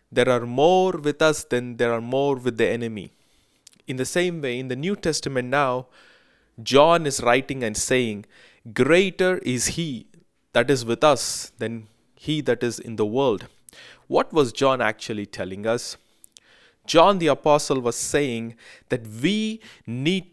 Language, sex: English, male